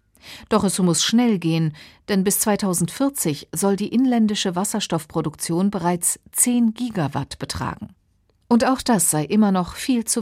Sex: female